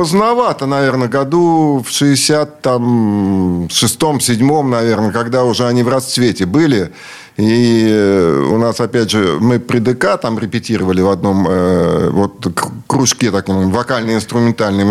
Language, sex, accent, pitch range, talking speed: Russian, male, native, 110-145 Hz, 125 wpm